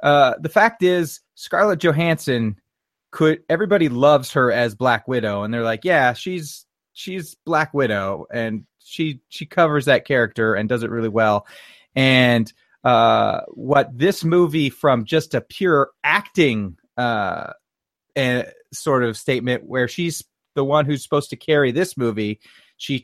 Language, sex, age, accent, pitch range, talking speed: English, male, 30-49, American, 115-145 Hz, 150 wpm